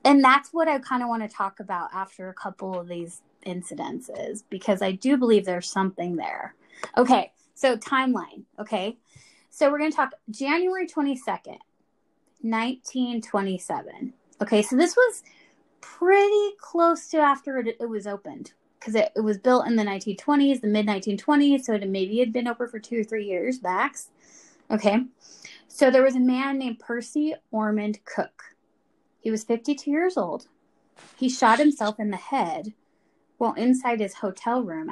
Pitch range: 205-275 Hz